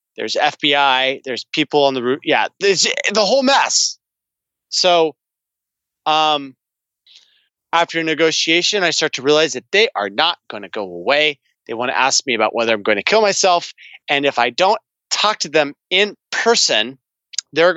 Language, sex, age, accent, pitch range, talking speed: English, male, 30-49, American, 125-160 Hz, 170 wpm